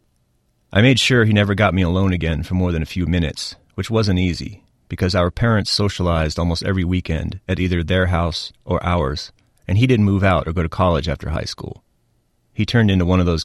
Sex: male